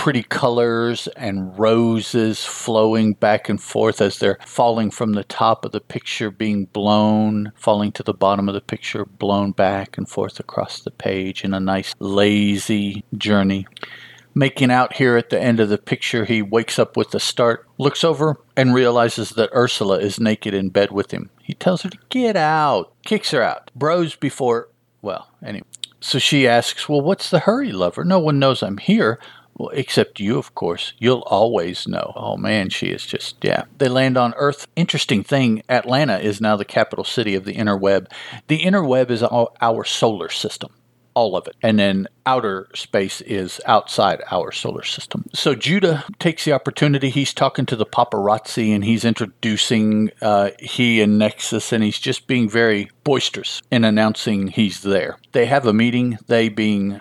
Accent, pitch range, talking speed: American, 105-130 Hz, 180 wpm